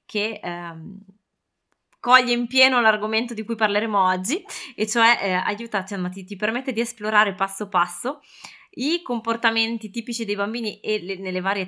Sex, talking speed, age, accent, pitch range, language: female, 155 wpm, 20-39, native, 190-260 Hz, Italian